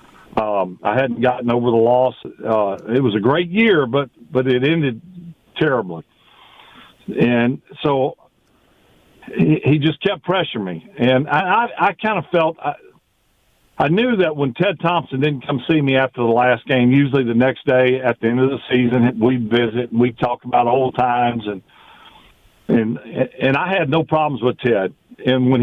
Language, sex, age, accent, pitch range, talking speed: English, male, 50-69, American, 120-150 Hz, 180 wpm